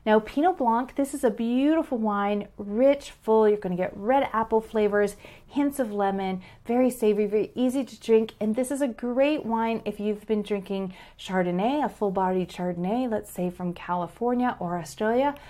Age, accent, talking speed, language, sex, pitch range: 30-49, American, 175 wpm, English, female, 185-220 Hz